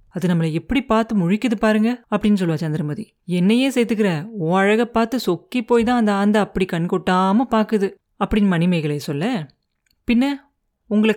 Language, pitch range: Tamil, 180-225 Hz